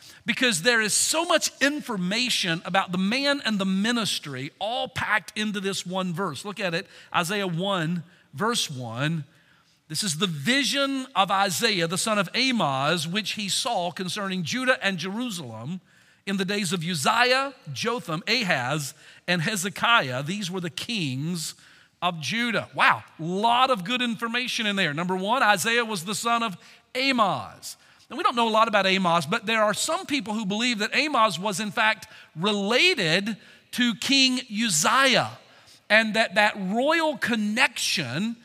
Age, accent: 50-69, American